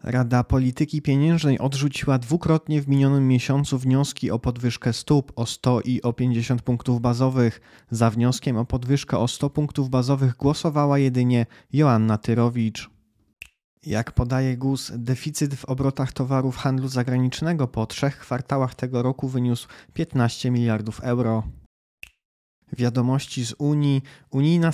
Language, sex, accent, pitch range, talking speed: Polish, male, native, 120-140 Hz, 130 wpm